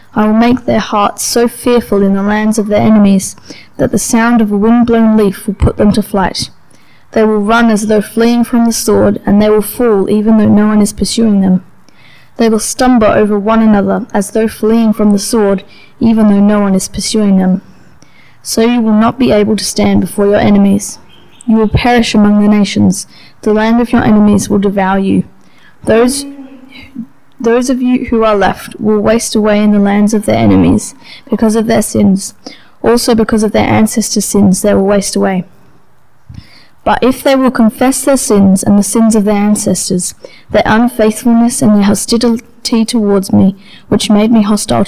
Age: 20-39